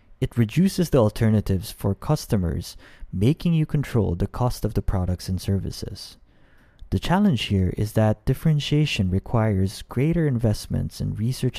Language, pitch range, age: English, 95-130 Hz, 20-39